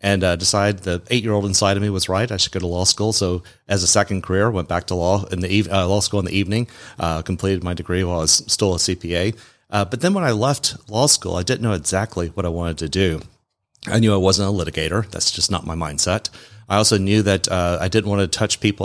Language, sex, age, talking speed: English, male, 30-49, 265 wpm